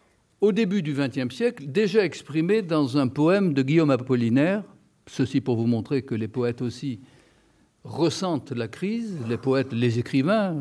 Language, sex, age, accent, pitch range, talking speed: French, male, 60-79, French, 125-165 Hz, 160 wpm